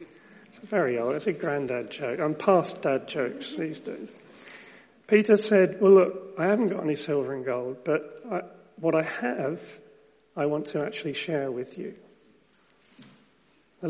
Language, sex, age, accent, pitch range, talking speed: English, male, 40-59, British, 150-190 Hz, 165 wpm